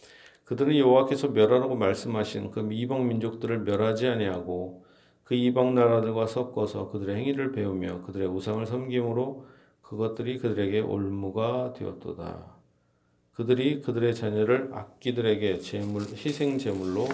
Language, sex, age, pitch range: Korean, male, 40-59, 90-130 Hz